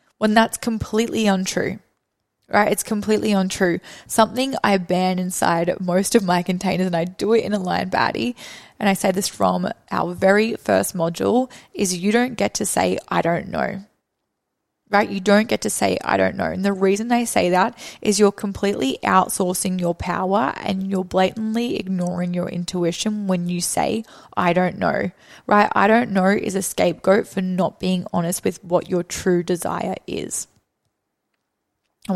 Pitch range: 180-210 Hz